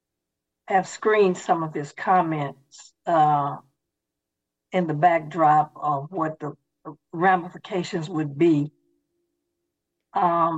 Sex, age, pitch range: female, 60-79, 155-195 Hz